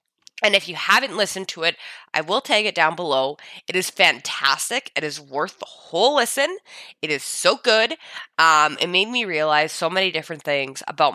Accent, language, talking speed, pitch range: American, English, 195 wpm, 150-210 Hz